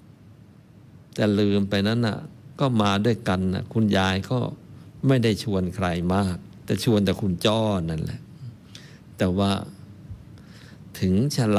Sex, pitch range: male, 95-130 Hz